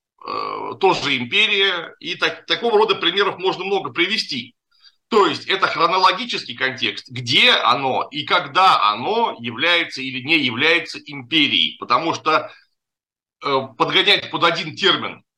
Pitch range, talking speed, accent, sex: 135-190 Hz, 115 wpm, native, male